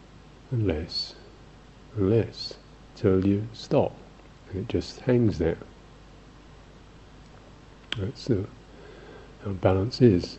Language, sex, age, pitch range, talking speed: English, male, 50-69, 95-120 Hz, 105 wpm